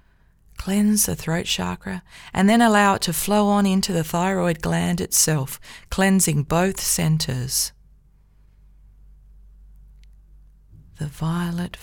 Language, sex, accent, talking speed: English, female, Australian, 105 wpm